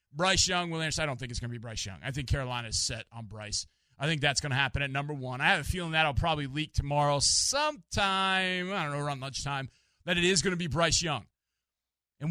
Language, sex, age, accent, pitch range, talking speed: English, male, 30-49, American, 135-185 Hz, 255 wpm